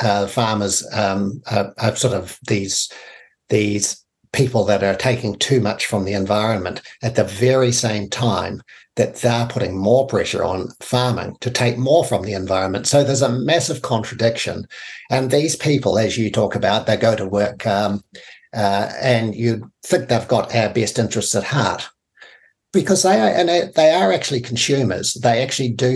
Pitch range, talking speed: 105-125 Hz, 175 wpm